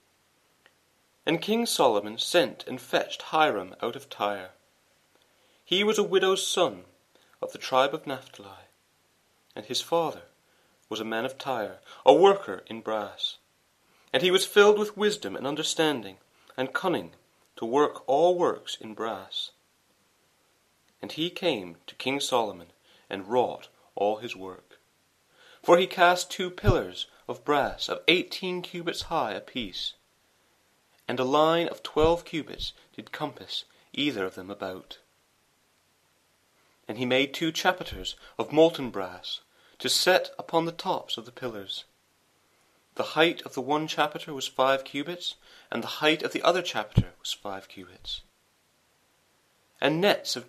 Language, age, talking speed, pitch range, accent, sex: English, 30-49, 145 wpm, 115-175 Hz, British, male